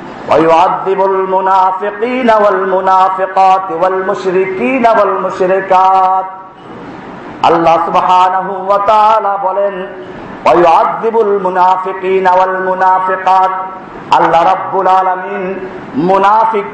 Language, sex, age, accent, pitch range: Bengali, male, 50-69, native, 185-255 Hz